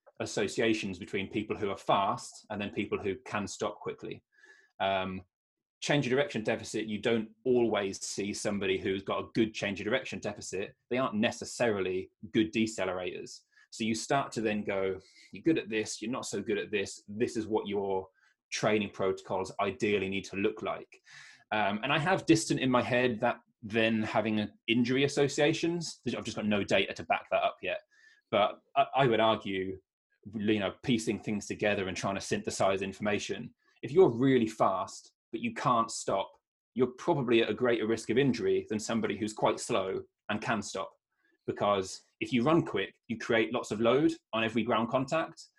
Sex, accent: male, British